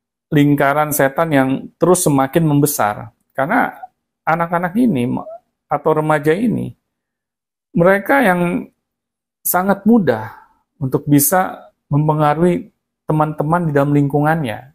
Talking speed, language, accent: 95 wpm, Indonesian, native